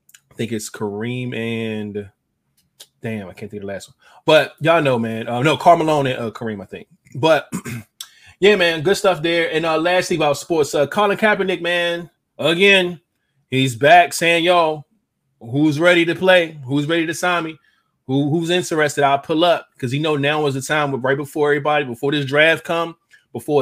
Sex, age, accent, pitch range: male, 20-39, American, 135-175 Hz